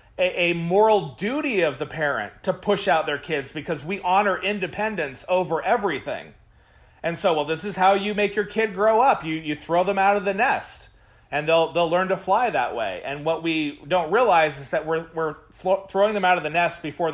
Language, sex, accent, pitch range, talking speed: English, male, American, 145-185 Hz, 215 wpm